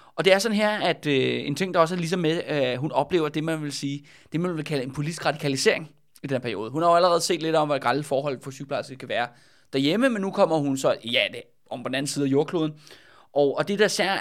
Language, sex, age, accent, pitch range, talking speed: Danish, male, 20-39, native, 135-175 Hz, 275 wpm